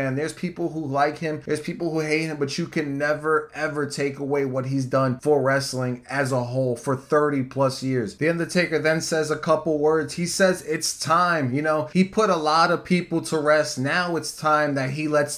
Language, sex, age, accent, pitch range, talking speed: English, male, 20-39, American, 140-160 Hz, 220 wpm